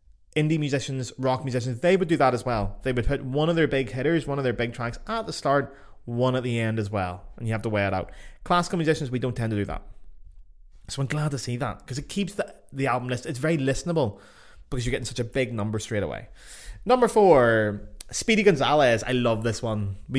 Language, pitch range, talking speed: English, 110-140 Hz, 240 wpm